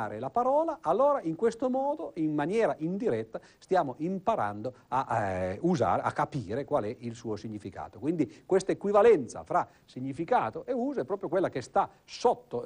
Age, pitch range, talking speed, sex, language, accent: 50-69, 120-170 Hz, 160 wpm, male, Italian, native